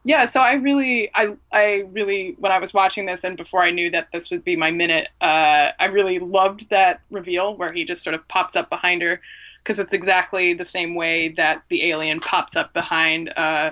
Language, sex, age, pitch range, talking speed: English, female, 20-39, 175-210 Hz, 215 wpm